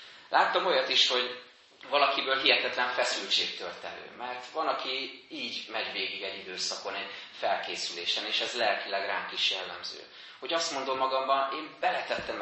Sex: male